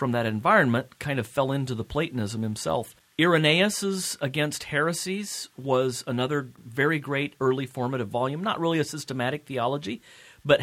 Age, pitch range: 40-59, 120-145 Hz